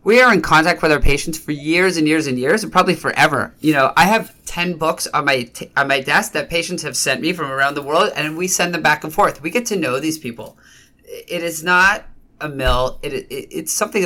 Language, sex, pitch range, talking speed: English, male, 130-170 Hz, 250 wpm